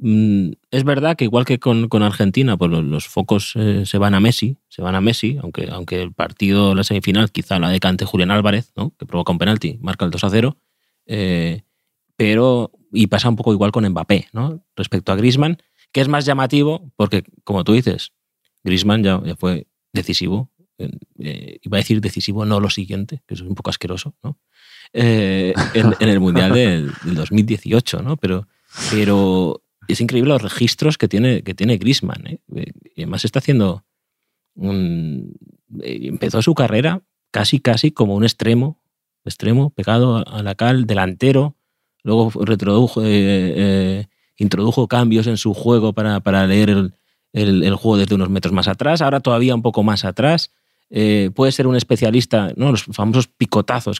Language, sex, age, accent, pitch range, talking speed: Spanish, male, 30-49, Spanish, 100-125 Hz, 175 wpm